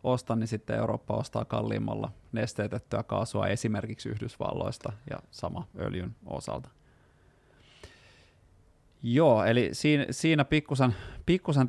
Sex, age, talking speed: male, 30-49, 90 wpm